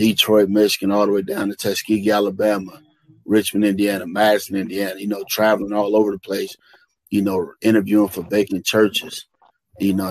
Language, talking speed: English, 165 wpm